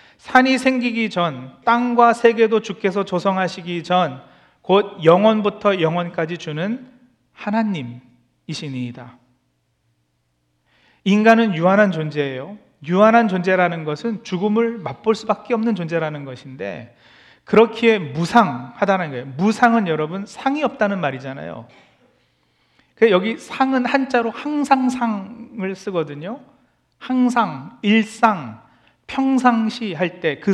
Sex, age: male, 40-59